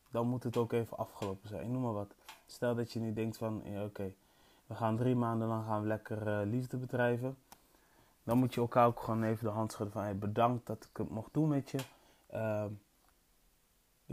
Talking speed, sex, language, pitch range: 195 wpm, male, Dutch, 110-135 Hz